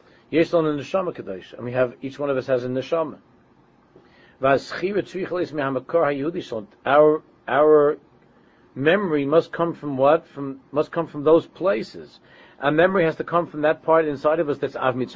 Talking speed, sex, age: 150 wpm, male, 50-69